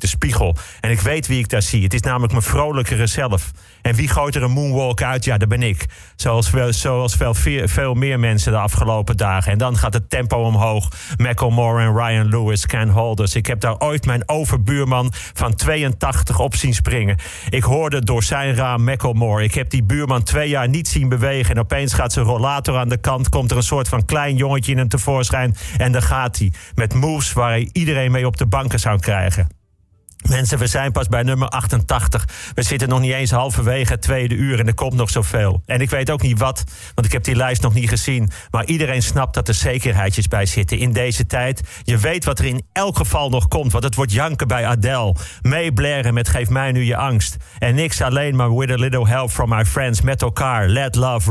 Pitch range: 110-130 Hz